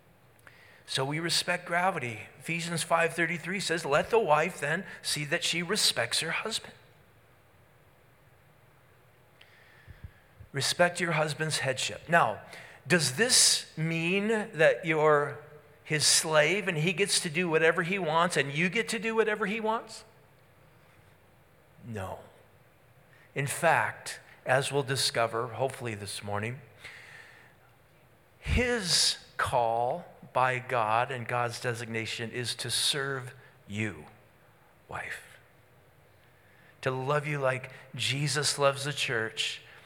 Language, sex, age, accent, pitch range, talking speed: English, male, 40-59, American, 120-155 Hz, 110 wpm